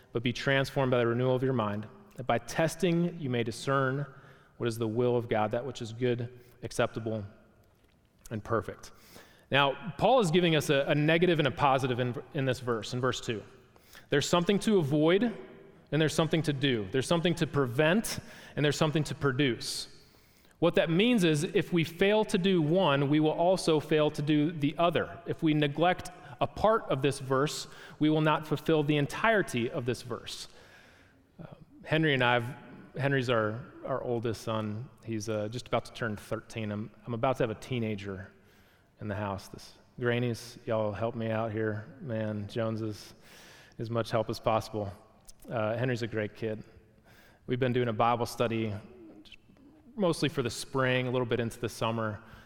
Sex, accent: male, American